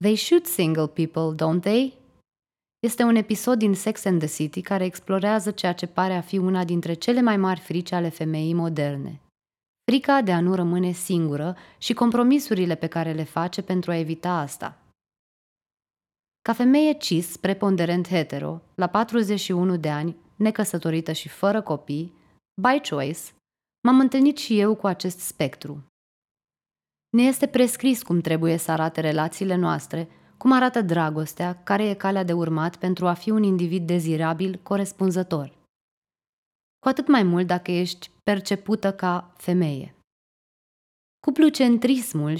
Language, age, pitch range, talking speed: Romanian, 20-39, 165-210 Hz, 145 wpm